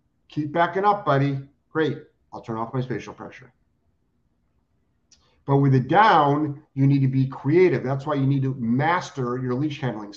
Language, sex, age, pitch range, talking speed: English, male, 50-69, 125-155 Hz, 170 wpm